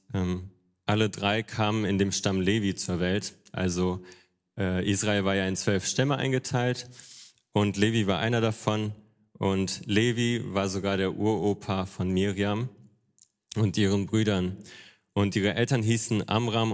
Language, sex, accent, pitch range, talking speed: German, male, German, 95-115 Hz, 140 wpm